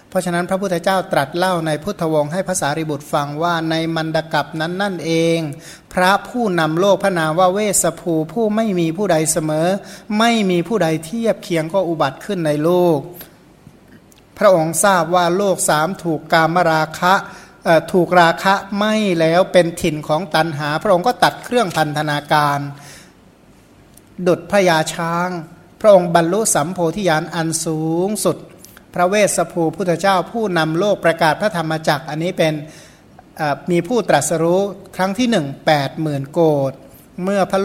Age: 60-79